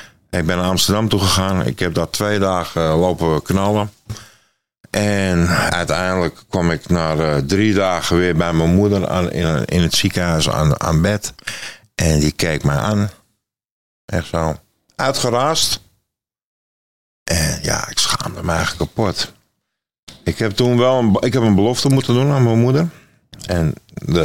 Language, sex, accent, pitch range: Dutch, male, Dutch, 85-110 Hz